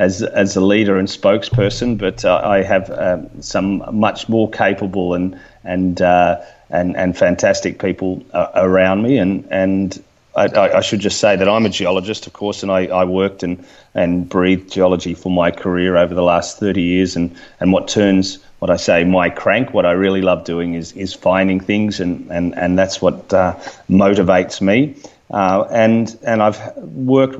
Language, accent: English, Australian